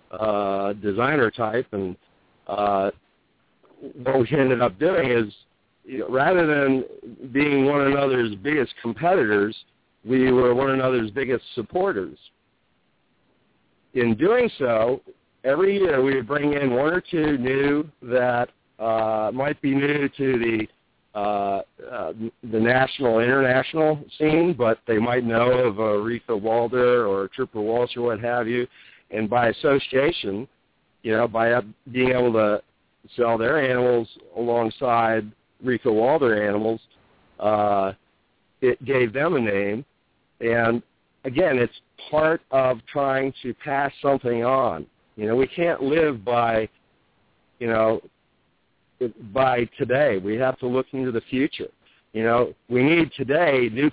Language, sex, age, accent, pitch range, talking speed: English, male, 50-69, American, 110-135 Hz, 135 wpm